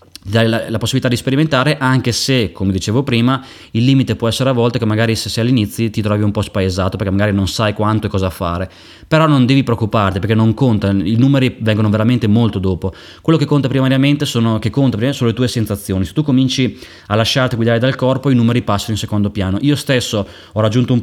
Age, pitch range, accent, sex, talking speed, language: 20-39, 105-130 Hz, native, male, 225 wpm, Italian